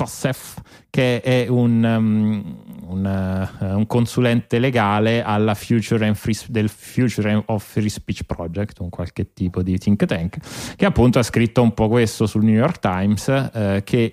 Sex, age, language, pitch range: male, 30-49, Italian, 105-125 Hz